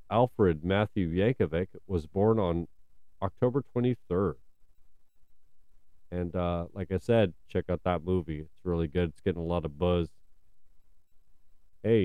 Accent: American